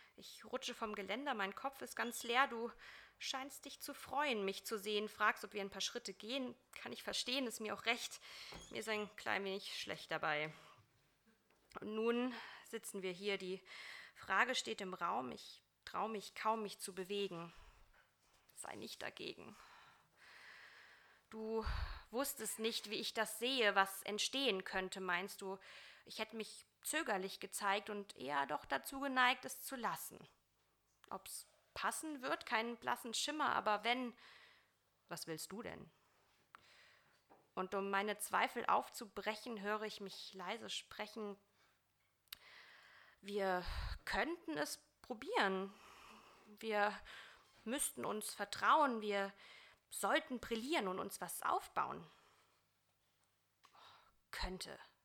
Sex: female